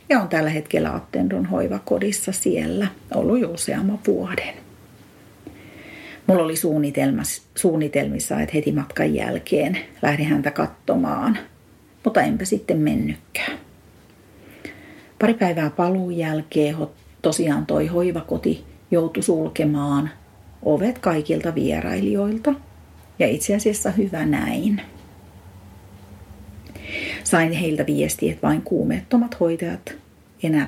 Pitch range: 145-205 Hz